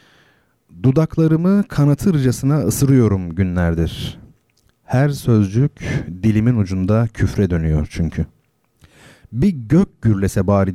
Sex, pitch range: male, 95-130 Hz